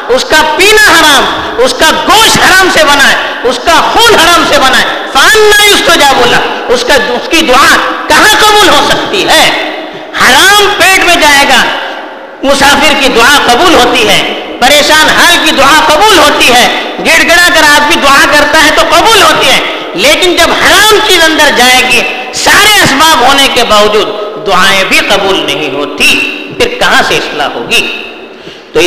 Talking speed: 110 wpm